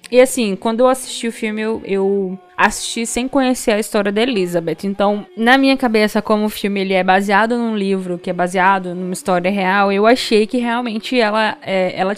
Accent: Brazilian